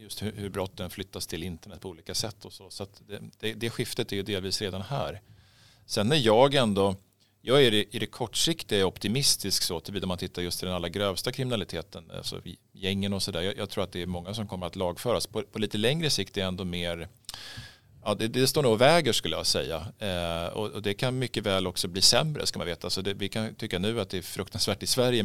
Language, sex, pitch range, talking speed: Swedish, male, 90-110 Hz, 240 wpm